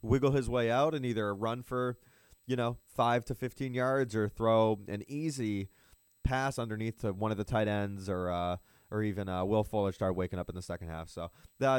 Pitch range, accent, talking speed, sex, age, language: 95-125 Hz, American, 215 wpm, male, 20-39, English